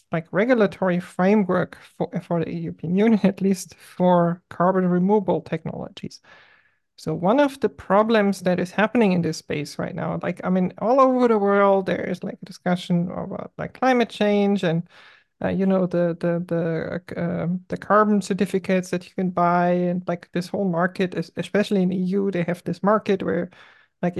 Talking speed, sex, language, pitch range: 185 wpm, male, English, 175-200 Hz